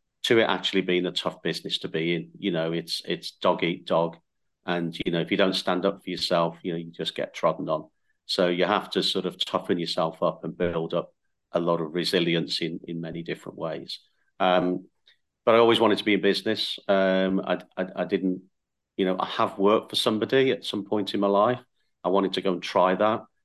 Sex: male